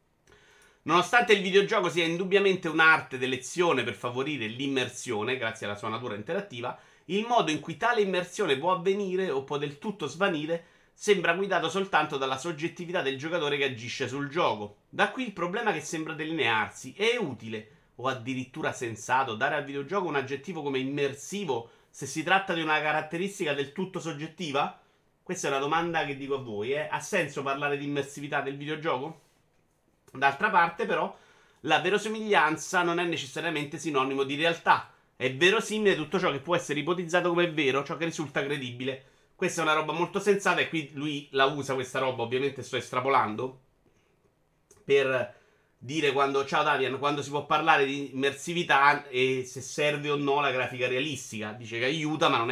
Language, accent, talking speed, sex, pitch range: Italian, native, 170 wpm, male, 135-175 Hz